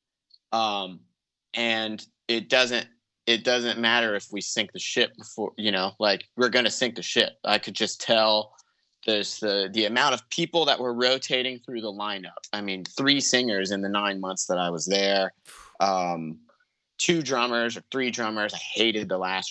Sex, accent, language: male, American, English